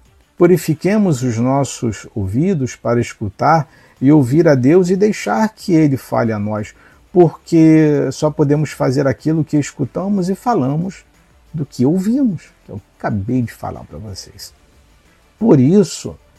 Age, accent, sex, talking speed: 50-69, Brazilian, male, 140 wpm